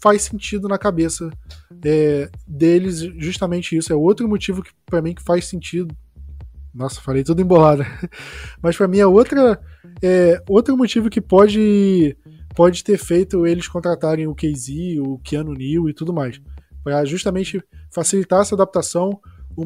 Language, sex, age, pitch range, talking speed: Portuguese, male, 20-39, 145-195 Hz, 155 wpm